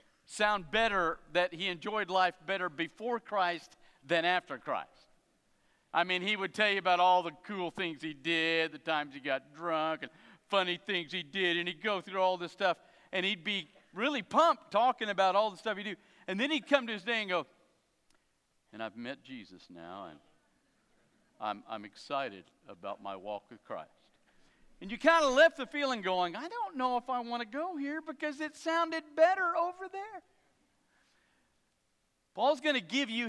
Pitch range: 170-240 Hz